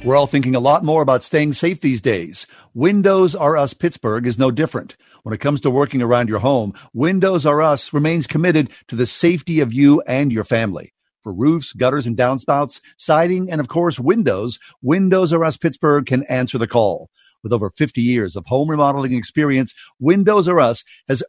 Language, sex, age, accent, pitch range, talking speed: English, male, 50-69, American, 125-160 Hz, 195 wpm